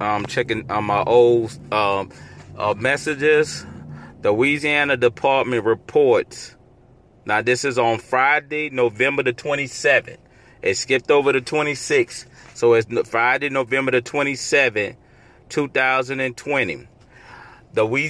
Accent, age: American, 30-49